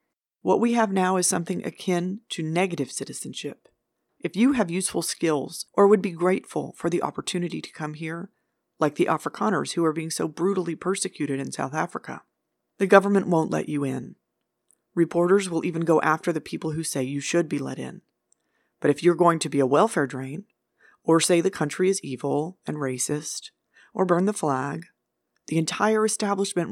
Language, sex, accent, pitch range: English, female, American, 150-190 Hz